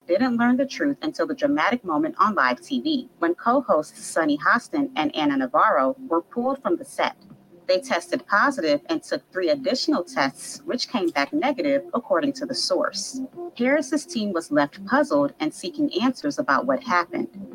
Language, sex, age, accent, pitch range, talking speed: English, female, 30-49, American, 220-290 Hz, 170 wpm